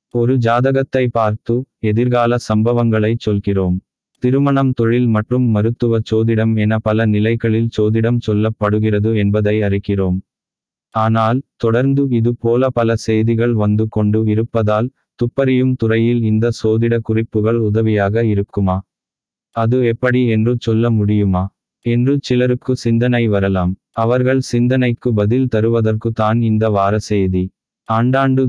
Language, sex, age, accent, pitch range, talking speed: Tamil, male, 20-39, native, 110-120 Hz, 105 wpm